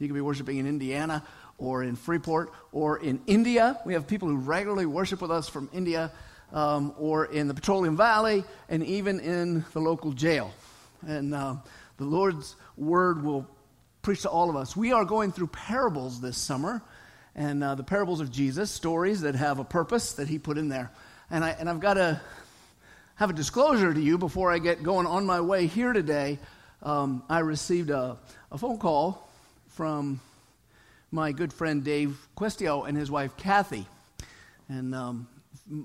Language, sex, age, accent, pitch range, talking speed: English, male, 50-69, American, 135-175 Hz, 180 wpm